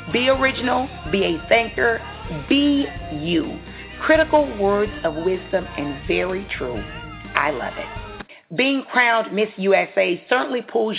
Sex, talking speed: female, 125 wpm